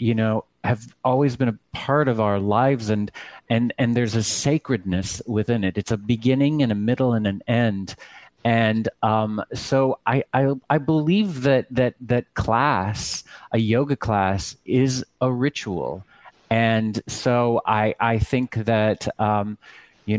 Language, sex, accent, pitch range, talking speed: English, male, American, 105-130 Hz, 155 wpm